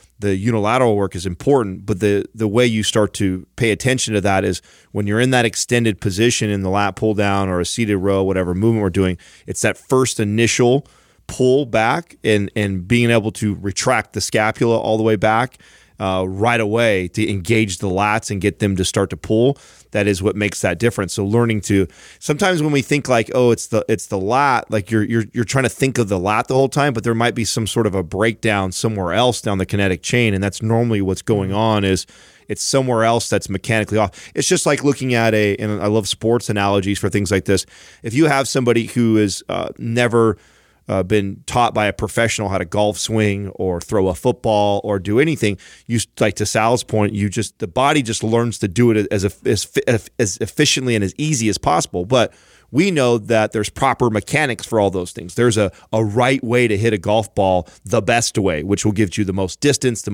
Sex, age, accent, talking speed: male, 30-49, American, 225 wpm